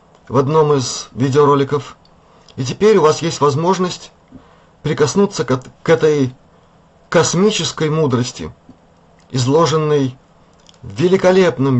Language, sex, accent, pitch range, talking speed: Russian, male, native, 130-160 Hz, 95 wpm